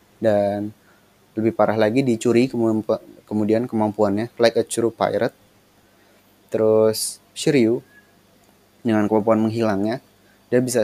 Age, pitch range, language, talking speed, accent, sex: 20-39, 100-120 Hz, Indonesian, 105 wpm, native, male